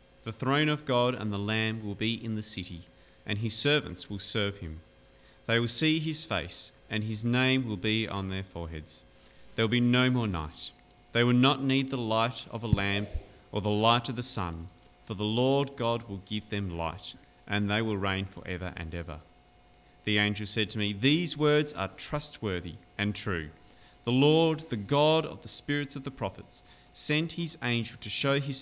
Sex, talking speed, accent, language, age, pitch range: male, 195 wpm, Australian, English, 30-49, 90-130 Hz